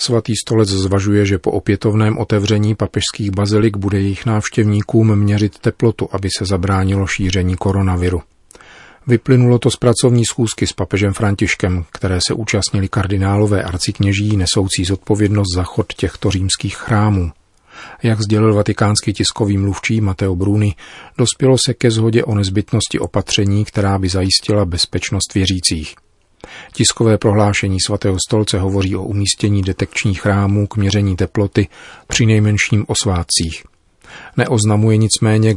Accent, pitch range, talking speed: native, 95-110 Hz, 125 wpm